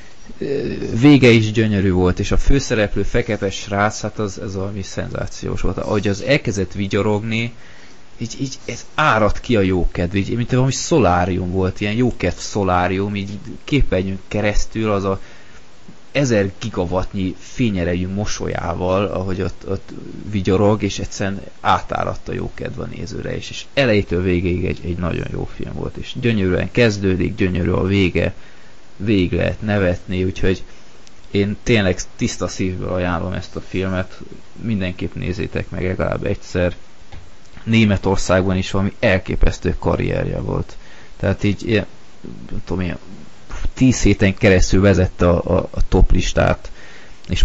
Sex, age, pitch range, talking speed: male, 20-39, 90-105 Hz, 140 wpm